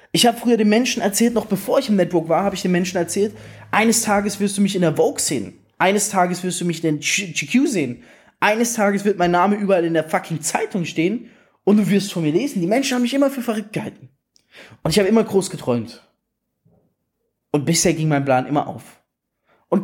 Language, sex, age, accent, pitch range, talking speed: German, male, 20-39, German, 155-205 Hz, 225 wpm